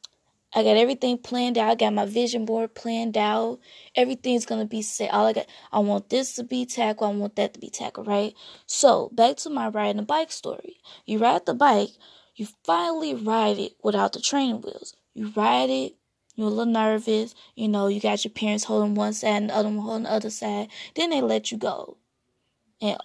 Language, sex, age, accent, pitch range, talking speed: English, female, 20-39, American, 205-245 Hz, 215 wpm